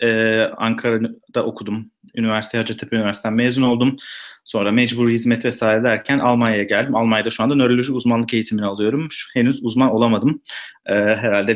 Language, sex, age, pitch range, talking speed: Turkish, male, 30-49, 115-135 Hz, 130 wpm